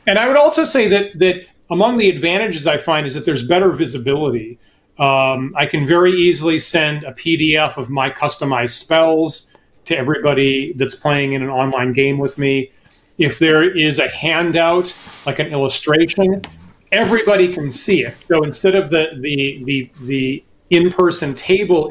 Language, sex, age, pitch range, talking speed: English, male, 30-49, 135-175 Hz, 165 wpm